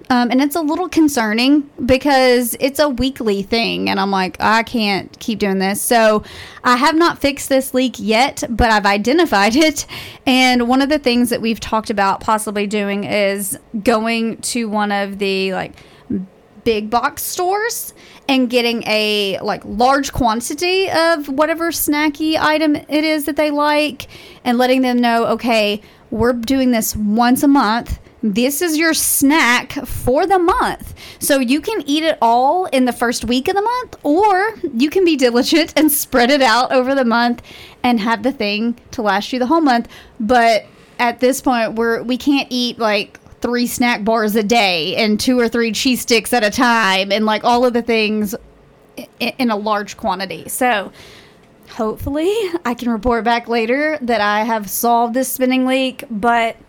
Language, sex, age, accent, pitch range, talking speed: English, female, 30-49, American, 225-285 Hz, 180 wpm